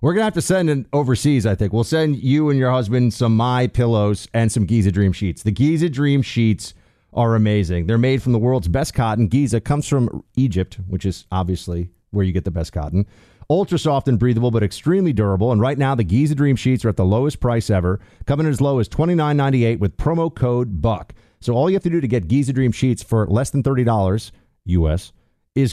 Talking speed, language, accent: 225 wpm, English, American